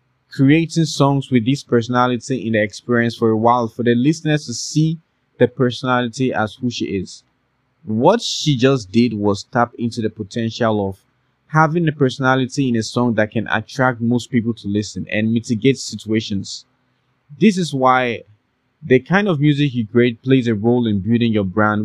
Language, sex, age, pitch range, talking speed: English, male, 20-39, 115-140 Hz, 175 wpm